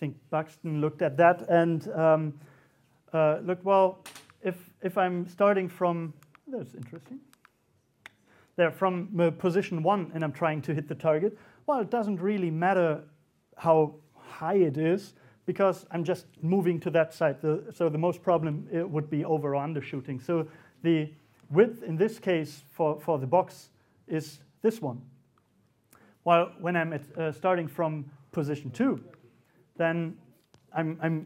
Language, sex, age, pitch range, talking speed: English, male, 40-59, 145-175 Hz, 155 wpm